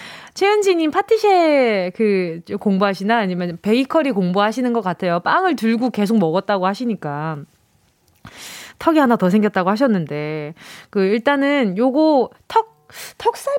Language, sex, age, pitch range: Korean, female, 20-39, 200-295 Hz